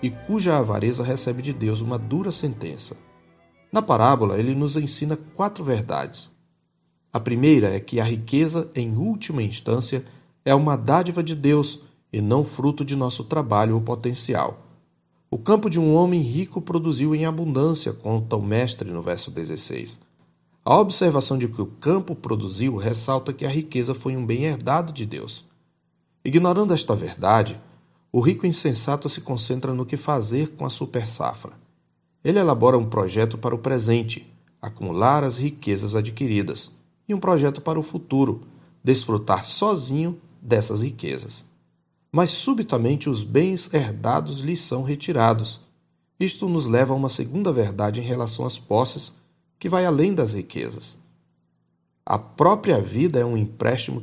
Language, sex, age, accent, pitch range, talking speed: Portuguese, male, 40-59, Brazilian, 115-160 Hz, 150 wpm